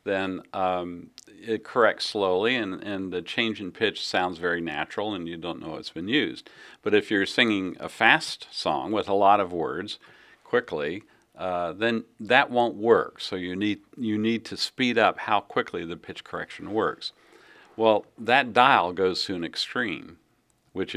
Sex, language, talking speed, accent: male, English, 175 wpm, American